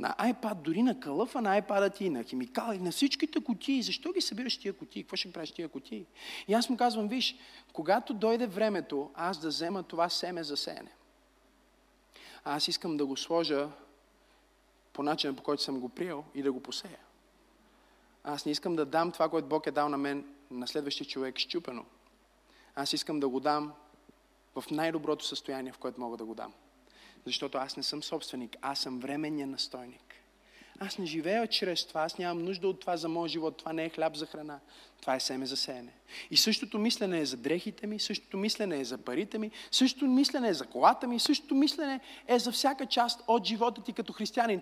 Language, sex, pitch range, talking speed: Bulgarian, male, 150-235 Hz, 200 wpm